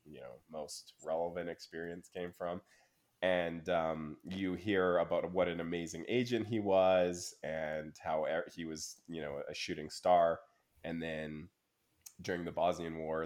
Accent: American